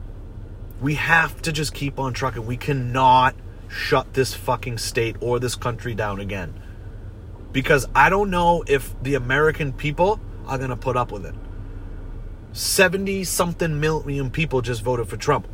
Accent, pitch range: American, 105-175 Hz